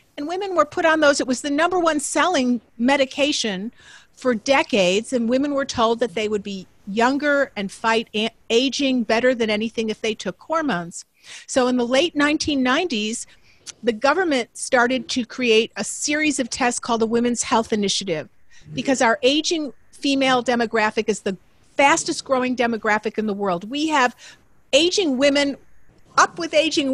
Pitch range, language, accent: 225-280 Hz, English, American